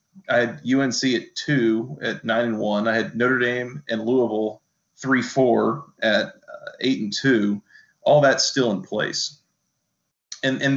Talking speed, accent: 160 wpm, American